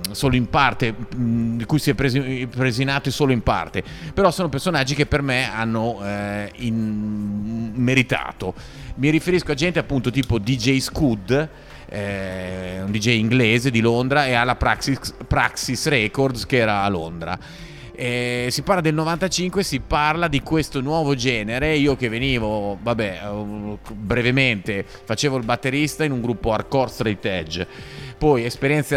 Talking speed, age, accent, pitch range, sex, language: 150 wpm, 30-49, native, 110-145 Hz, male, Italian